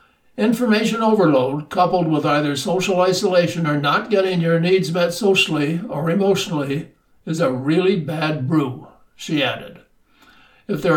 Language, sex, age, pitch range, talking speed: English, male, 60-79, 150-195 Hz, 135 wpm